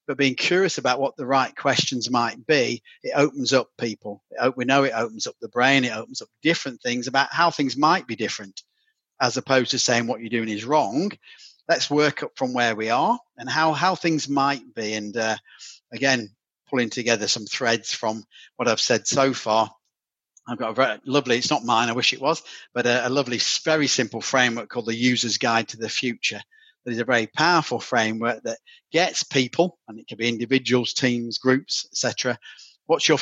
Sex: male